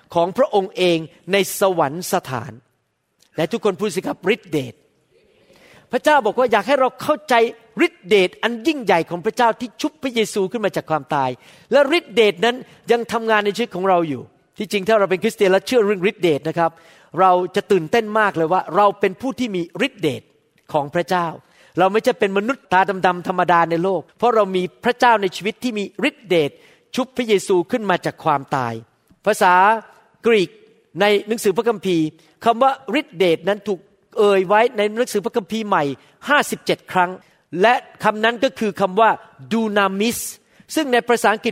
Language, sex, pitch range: Thai, male, 175-225 Hz